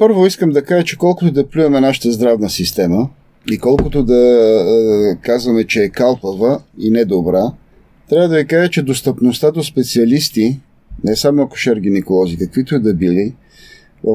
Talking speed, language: 170 wpm, Bulgarian